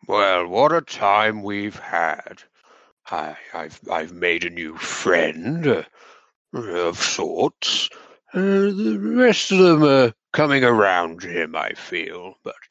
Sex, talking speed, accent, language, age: male, 125 wpm, British, English, 60-79